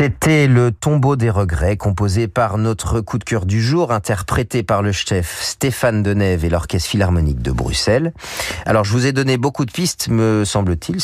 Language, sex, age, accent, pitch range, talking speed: French, male, 40-59, French, 85-115 Hz, 185 wpm